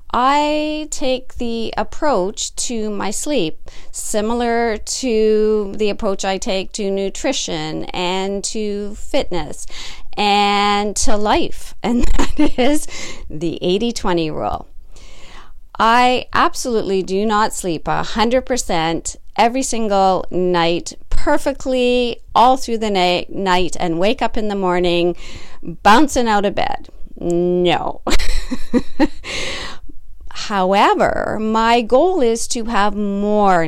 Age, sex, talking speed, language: 40-59, female, 105 wpm, English